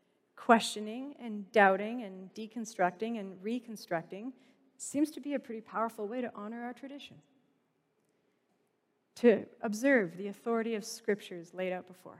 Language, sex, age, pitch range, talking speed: English, female, 30-49, 200-245 Hz, 135 wpm